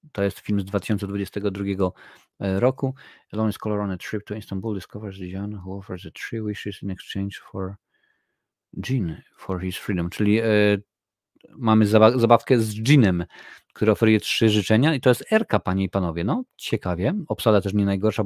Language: Polish